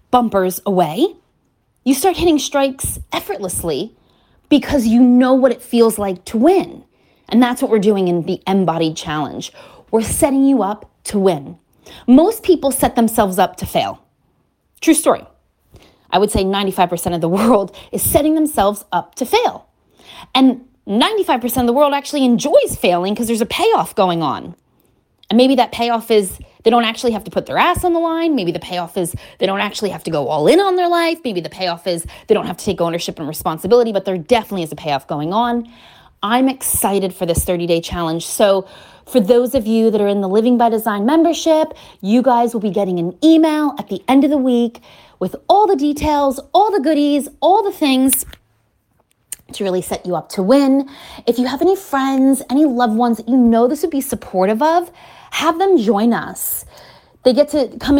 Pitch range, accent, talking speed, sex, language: 195-280 Hz, American, 200 wpm, female, English